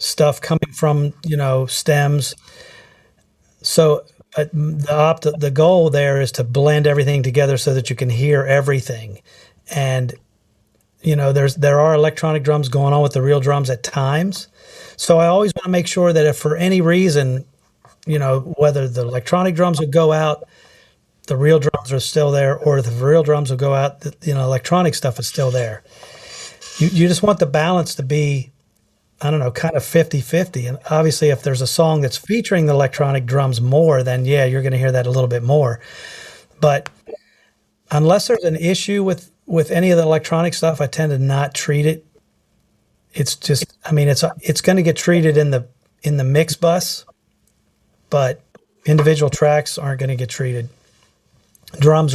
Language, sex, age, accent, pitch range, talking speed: English, male, 40-59, American, 135-160 Hz, 190 wpm